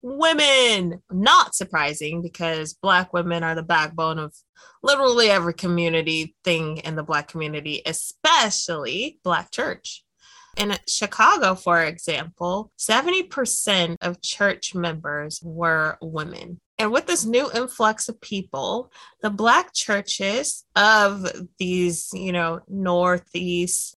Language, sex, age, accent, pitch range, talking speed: English, female, 20-39, American, 170-210 Hz, 115 wpm